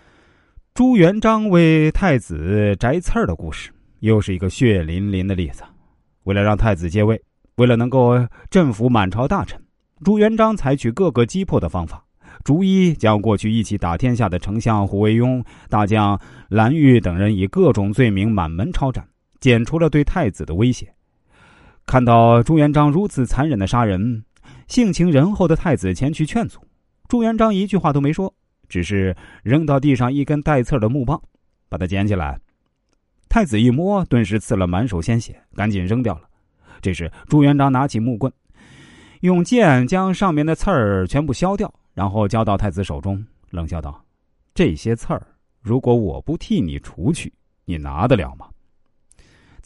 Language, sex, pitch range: Chinese, male, 95-145 Hz